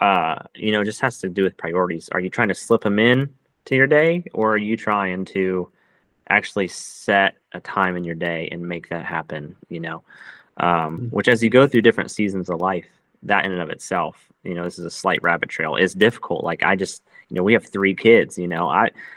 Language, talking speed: English, 235 wpm